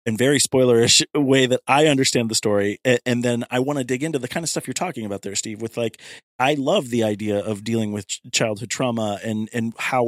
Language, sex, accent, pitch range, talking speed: English, male, American, 115-140 Hz, 230 wpm